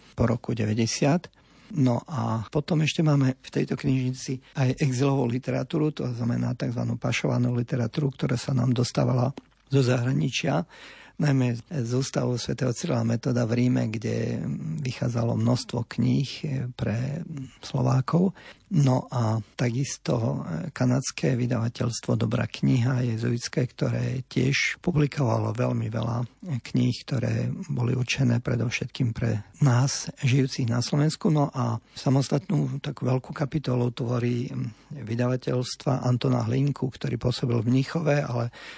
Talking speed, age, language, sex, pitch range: 120 wpm, 50-69, Slovak, male, 120-140 Hz